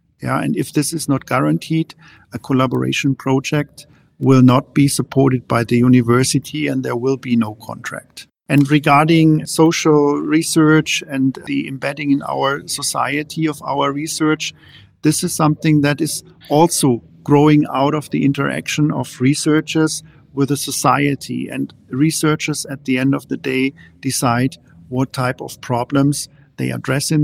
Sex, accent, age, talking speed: male, German, 50-69, 150 wpm